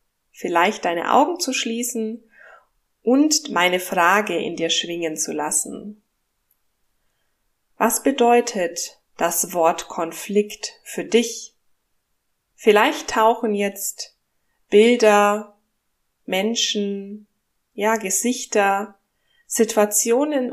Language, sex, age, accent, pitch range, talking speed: German, female, 20-39, German, 180-225 Hz, 80 wpm